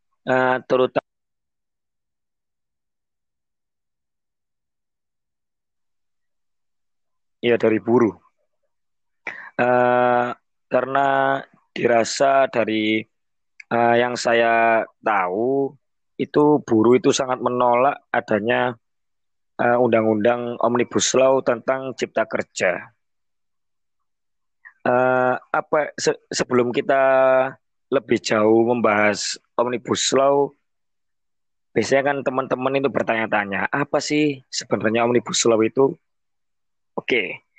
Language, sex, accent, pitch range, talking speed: Indonesian, male, native, 115-140 Hz, 80 wpm